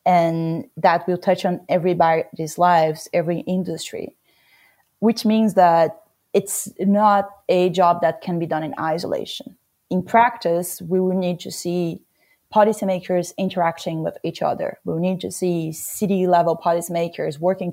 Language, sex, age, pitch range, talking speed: English, female, 30-49, 170-200 Hz, 140 wpm